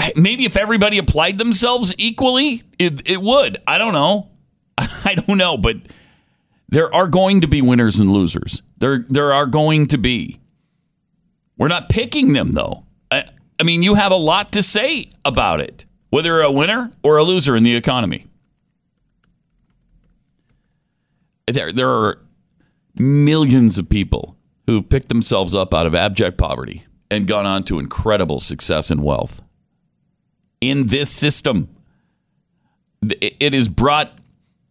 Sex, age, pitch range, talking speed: male, 40-59, 115-180 Hz, 145 wpm